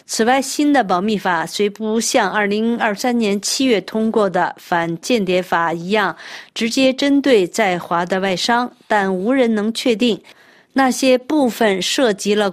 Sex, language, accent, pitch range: female, Chinese, native, 190-240 Hz